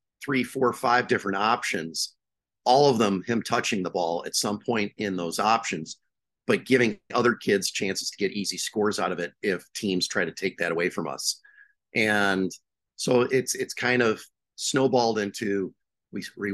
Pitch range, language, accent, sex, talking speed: 95-120 Hz, English, American, male, 180 wpm